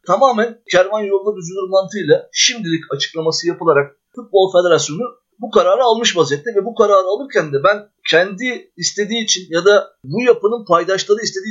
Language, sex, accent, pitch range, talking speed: Turkish, male, native, 175-245 Hz, 145 wpm